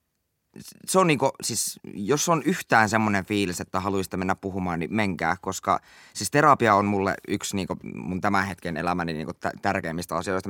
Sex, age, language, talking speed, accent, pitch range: male, 20-39, Finnish, 170 wpm, native, 95-115 Hz